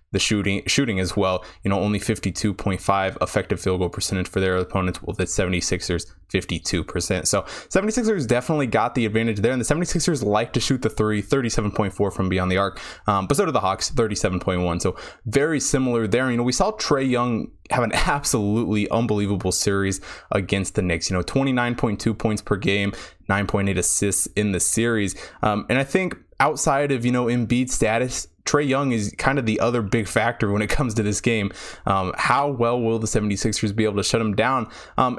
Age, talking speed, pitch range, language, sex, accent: 20-39, 195 wpm, 100-125 Hz, English, male, American